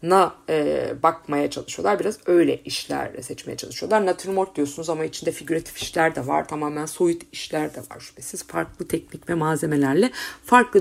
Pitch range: 165-275 Hz